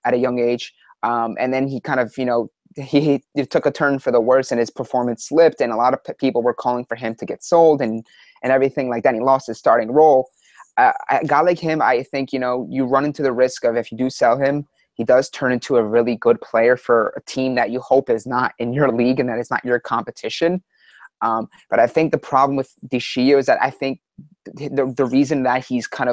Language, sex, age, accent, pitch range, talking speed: English, male, 20-39, American, 125-150 Hz, 255 wpm